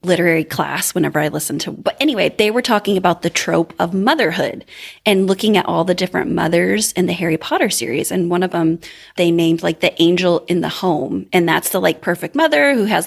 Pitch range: 180-240 Hz